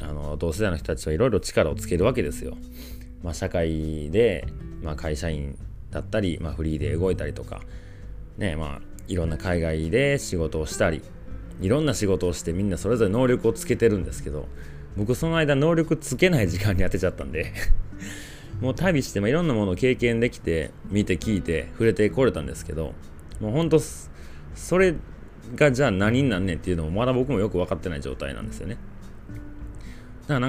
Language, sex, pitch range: Japanese, male, 80-110 Hz